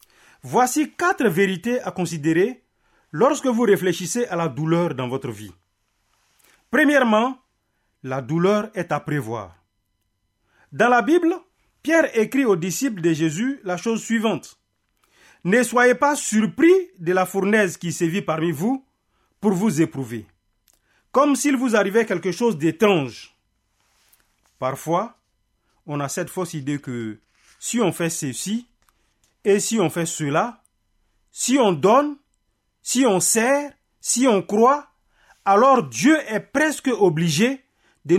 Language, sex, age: French, male, 40-59